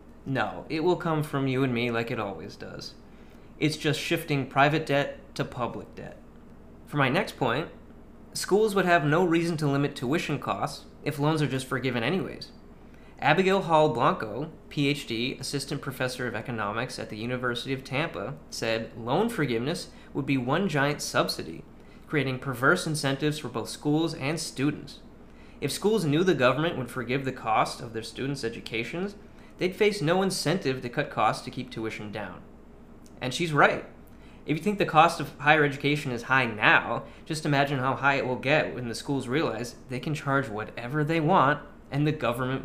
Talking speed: 175 wpm